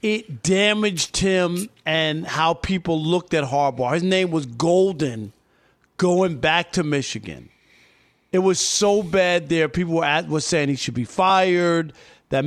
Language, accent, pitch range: English, American, 155-190 Hz